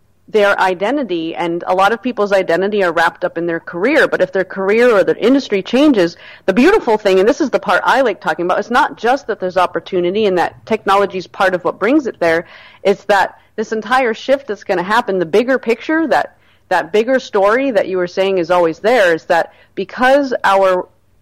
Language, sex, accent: English, female, American